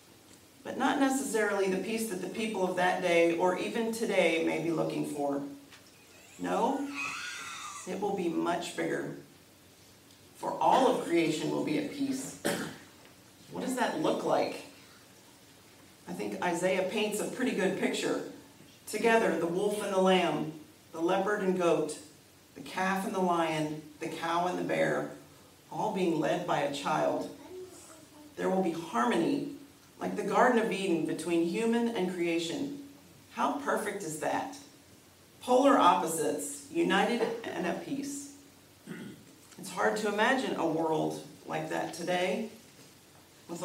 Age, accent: 40-59, American